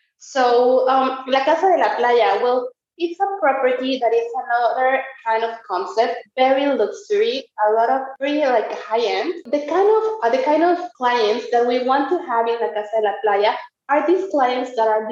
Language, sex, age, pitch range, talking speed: English, female, 20-39, 210-310 Hz, 200 wpm